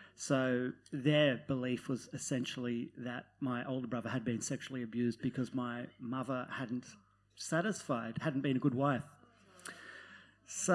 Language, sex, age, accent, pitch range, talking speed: English, male, 40-59, Australian, 120-145 Hz, 135 wpm